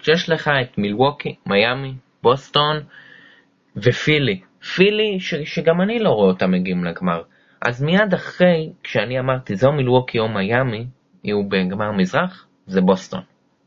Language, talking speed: Hebrew, 130 wpm